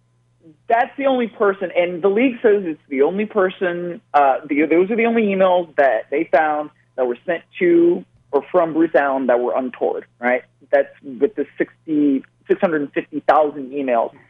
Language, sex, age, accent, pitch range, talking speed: English, male, 40-59, American, 130-195 Hz, 165 wpm